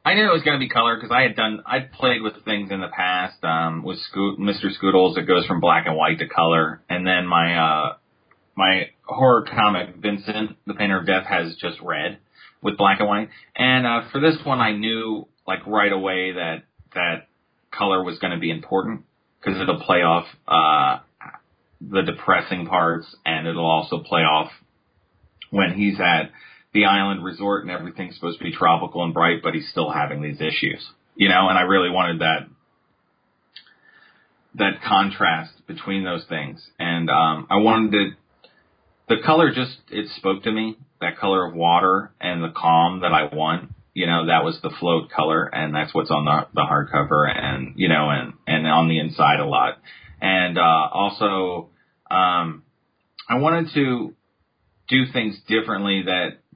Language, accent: English, American